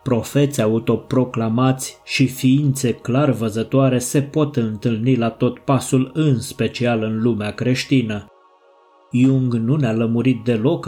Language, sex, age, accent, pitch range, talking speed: Romanian, male, 20-39, native, 110-130 Hz, 120 wpm